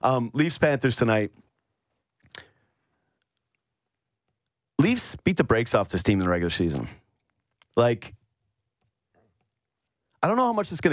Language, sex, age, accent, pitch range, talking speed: English, male, 30-49, American, 110-145 Hz, 125 wpm